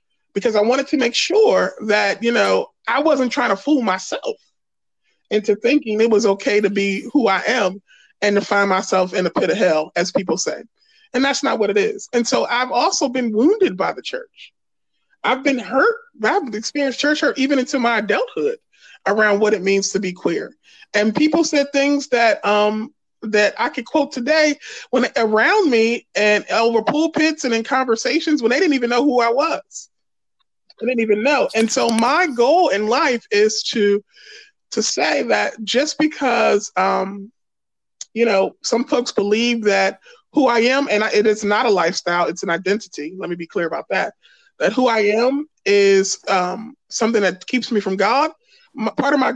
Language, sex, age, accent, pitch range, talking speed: English, male, 30-49, American, 205-285 Hz, 190 wpm